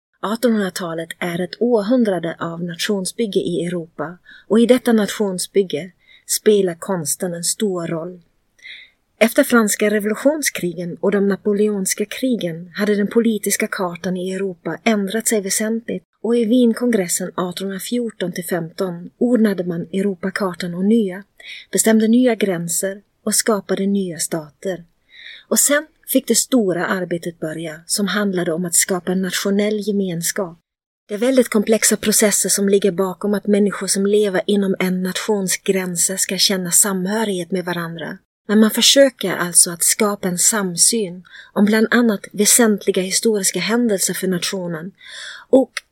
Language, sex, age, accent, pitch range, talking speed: Swedish, female, 30-49, native, 180-215 Hz, 135 wpm